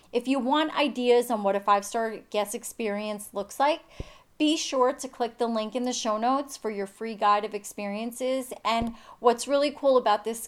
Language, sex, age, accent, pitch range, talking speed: English, female, 30-49, American, 205-255 Hz, 195 wpm